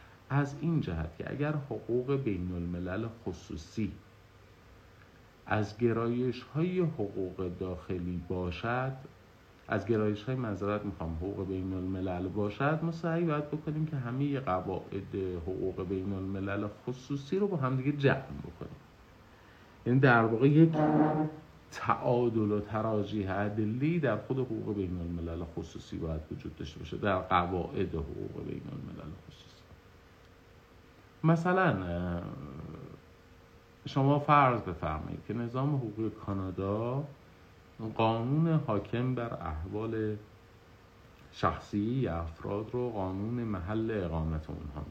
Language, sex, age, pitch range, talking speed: Persian, male, 50-69, 90-125 Hz, 110 wpm